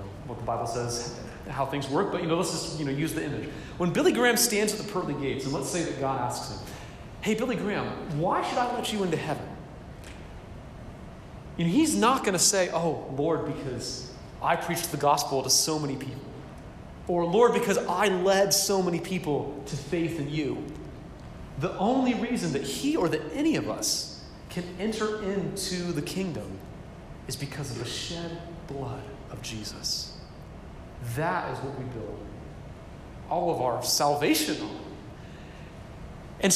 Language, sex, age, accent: English, male, 30-49, American